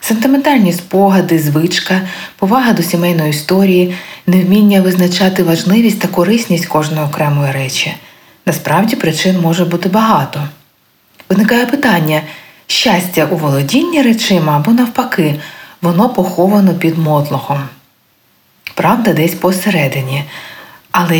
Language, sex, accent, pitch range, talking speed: Ukrainian, female, native, 150-210 Hz, 100 wpm